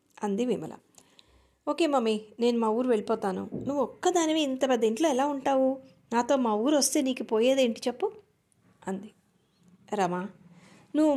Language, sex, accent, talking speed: Telugu, female, native, 135 wpm